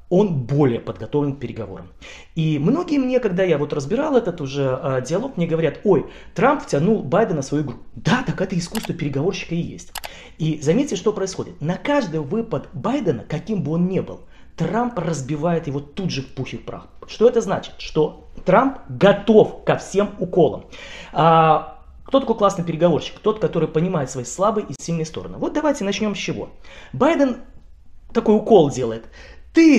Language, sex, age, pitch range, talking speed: Russian, male, 30-49, 155-235 Hz, 170 wpm